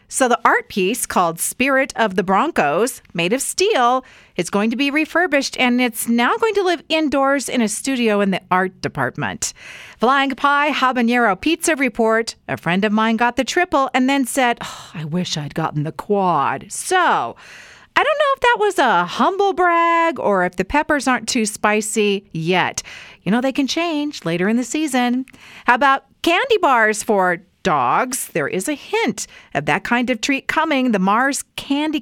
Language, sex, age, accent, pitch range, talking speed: English, female, 40-59, American, 195-285 Hz, 185 wpm